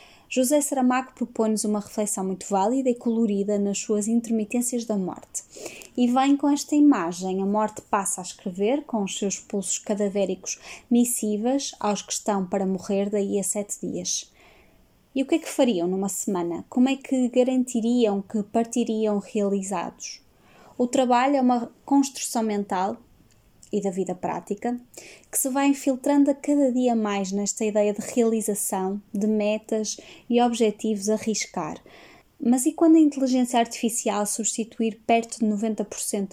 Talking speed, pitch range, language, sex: 150 wpm, 200-240 Hz, Portuguese, female